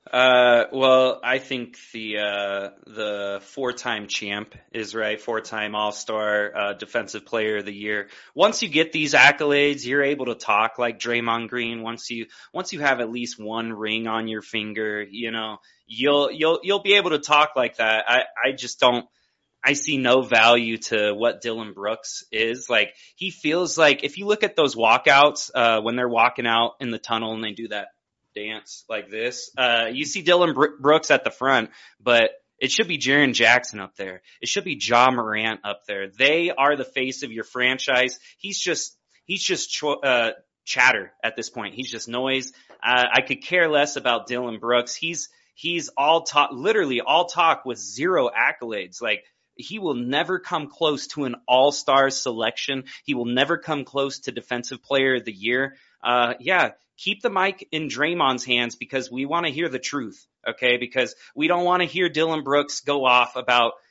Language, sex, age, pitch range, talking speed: English, male, 20-39, 115-145 Hz, 190 wpm